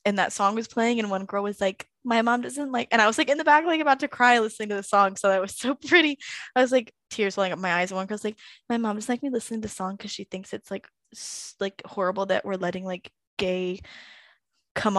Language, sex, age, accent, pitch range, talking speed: English, female, 10-29, American, 200-295 Hz, 275 wpm